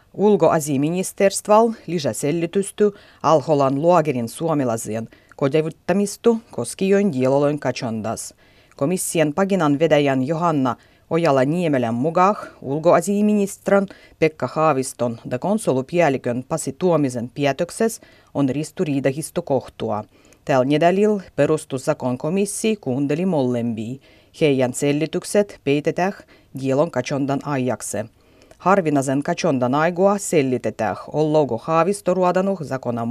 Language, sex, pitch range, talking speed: Finnish, female, 130-185 Hz, 85 wpm